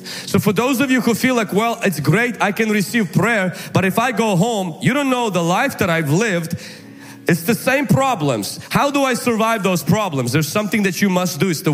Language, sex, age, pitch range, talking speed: English, male, 30-49, 165-235 Hz, 235 wpm